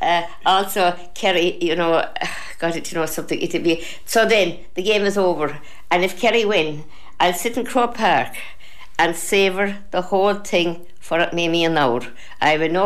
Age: 60-79